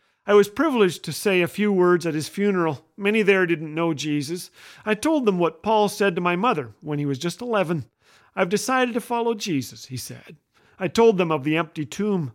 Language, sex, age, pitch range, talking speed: English, male, 40-59, 155-200 Hz, 215 wpm